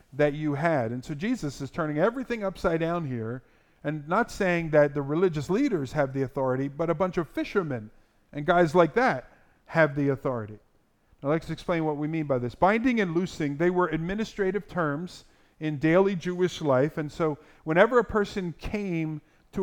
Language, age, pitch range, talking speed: English, 50-69, 150-190 Hz, 185 wpm